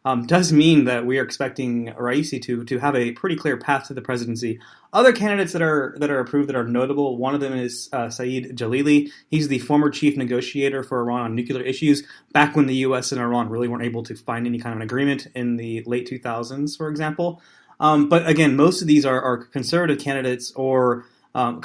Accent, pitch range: American, 120-145 Hz